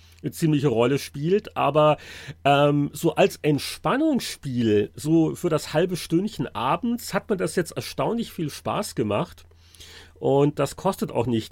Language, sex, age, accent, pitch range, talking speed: German, male, 40-59, German, 120-165 Hz, 145 wpm